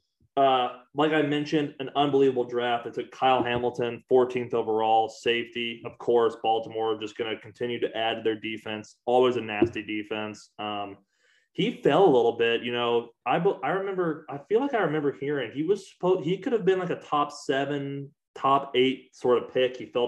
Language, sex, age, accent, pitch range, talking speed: English, male, 20-39, American, 110-145 Hz, 195 wpm